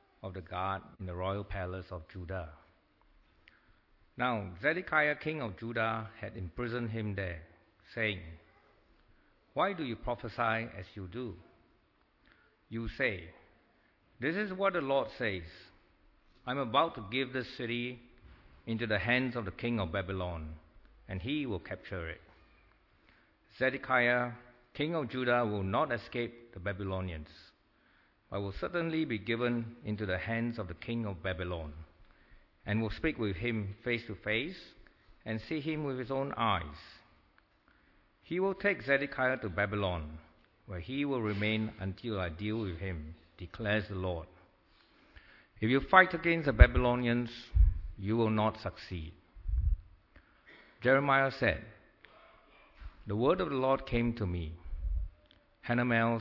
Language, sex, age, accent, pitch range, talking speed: English, male, 60-79, Malaysian, 90-120 Hz, 140 wpm